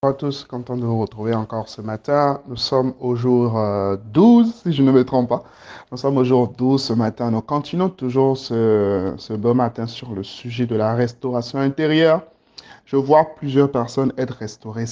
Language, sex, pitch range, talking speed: French, male, 110-135 Hz, 195 wpm